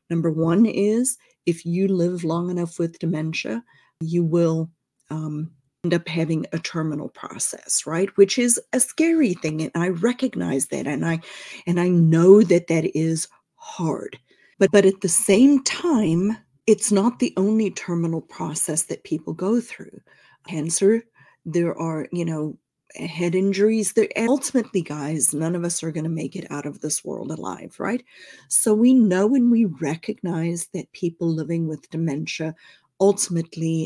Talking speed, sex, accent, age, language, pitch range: 160 wpm, female, American, 30-49, English, 160-200 Hz